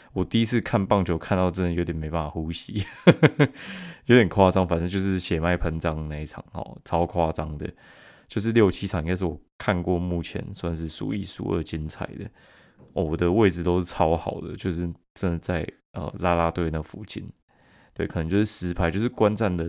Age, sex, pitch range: 20-39, male, 85-100 Hz